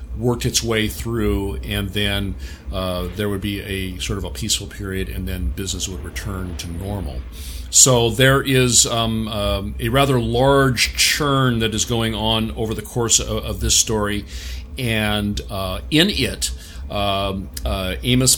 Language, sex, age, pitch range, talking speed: English, male, 40-59, 95-115 Hz, 165 wpm